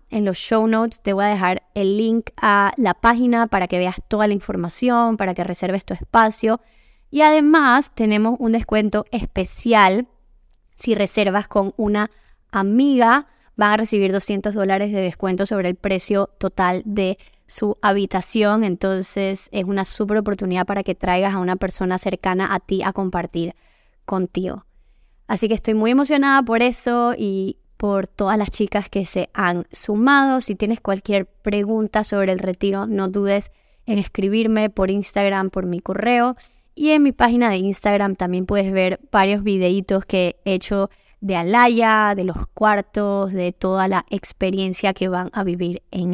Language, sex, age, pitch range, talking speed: Spanish, female, 20-39, 190-220 Hz, 165 wpm